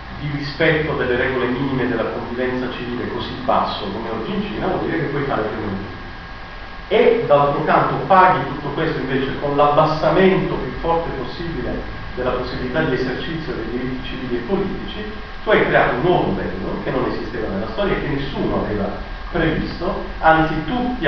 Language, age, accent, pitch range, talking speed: Italian, 40-59, native, 125-180 Hz, 170 wpm